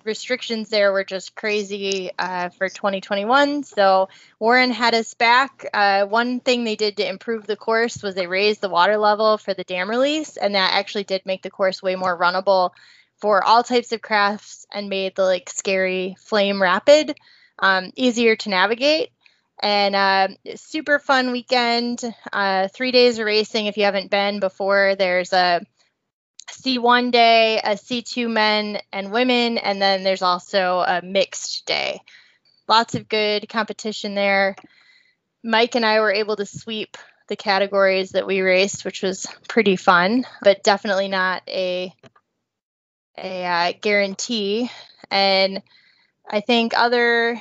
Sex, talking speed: female, 155 wpm